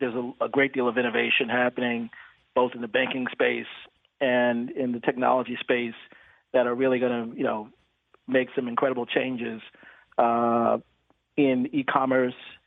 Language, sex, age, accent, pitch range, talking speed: English, male, 40-59, American, 125-140 Hz, 150 wpm